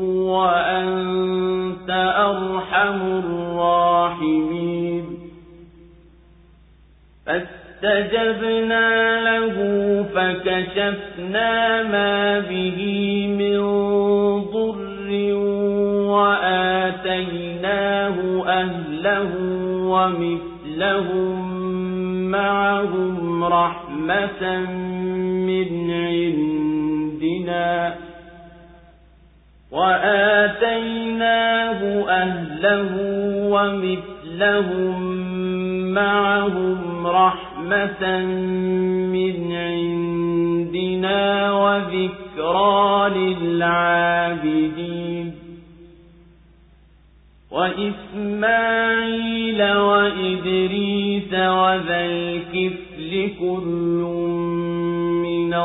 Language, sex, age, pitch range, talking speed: English, male, 50-69, 170-200 Hz, 35 wpm